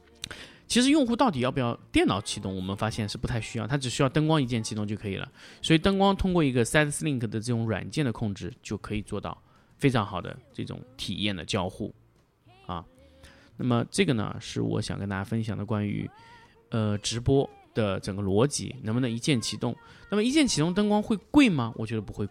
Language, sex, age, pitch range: Chinese, male, 20-39, 105-145 Hz